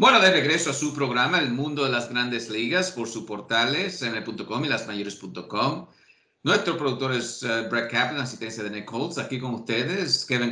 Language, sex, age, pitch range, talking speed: English, male, 50-69, 110-135 Hz, 175 wpm